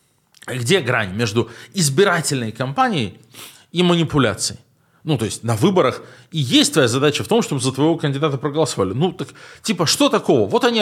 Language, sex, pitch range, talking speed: Russian, male, 125-185 Hz, 165 wpm